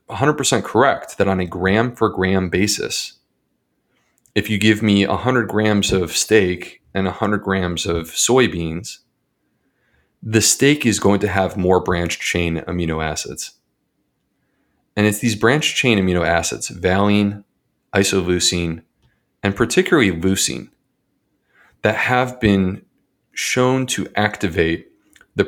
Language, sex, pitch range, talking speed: English, male, 90-110 Hz, 115 wpm